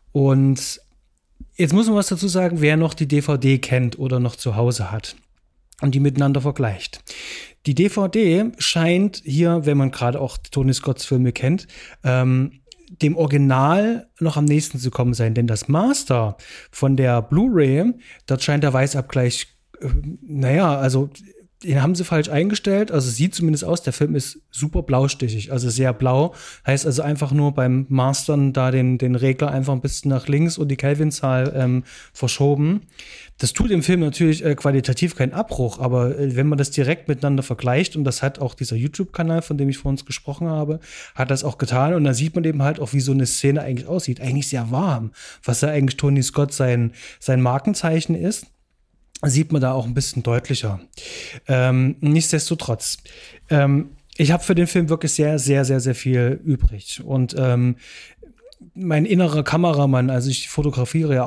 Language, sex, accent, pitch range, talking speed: German, male, German, 130-160 Hz, 180 wpm